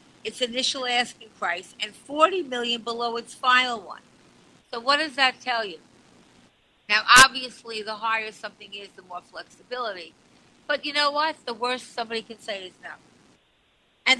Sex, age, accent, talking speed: female, 50-69, American, 160 wpm